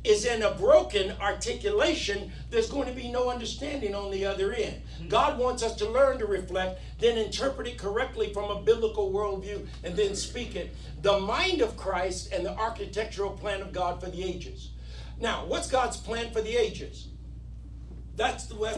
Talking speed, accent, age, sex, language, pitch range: 175 wpm, American, 60-79, male, English, 170-220 Hz